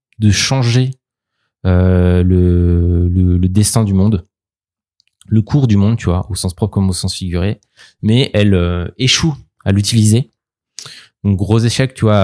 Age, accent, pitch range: 20-39, French, 95-115 Hz